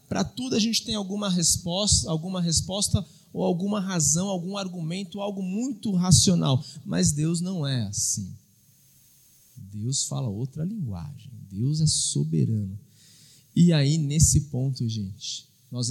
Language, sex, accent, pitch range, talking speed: Portuguese, male, Brazilian, 140-180 Hz, 130 wpm